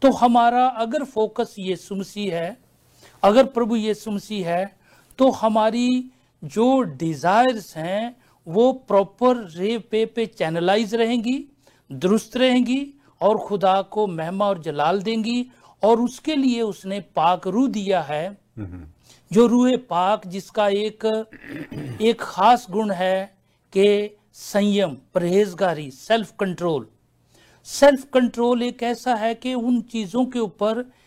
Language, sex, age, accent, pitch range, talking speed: Hindi, male, 60-79, native, 185-240 Hz, 125 wpm